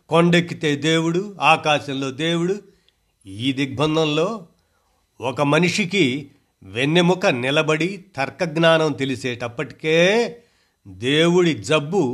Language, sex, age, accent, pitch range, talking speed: Telugu, male, 50-69, native, 120-160 Hz, 70 wpm